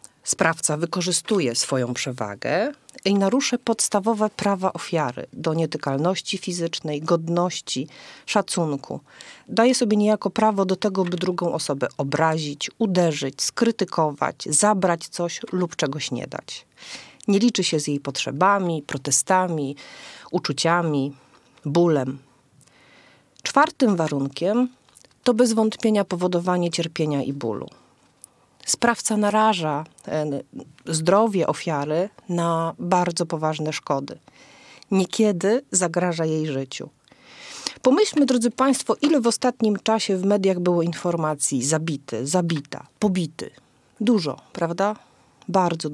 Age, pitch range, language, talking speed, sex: 40-59, 150-210 Hz, Polish, 105 wpm, female